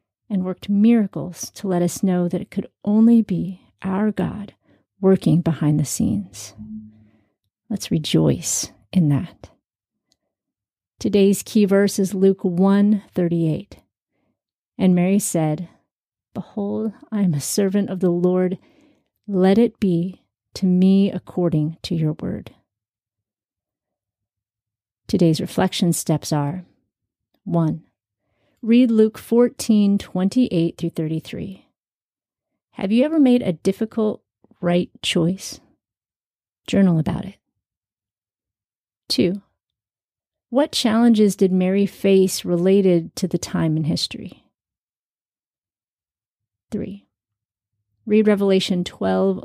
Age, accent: 40-59, American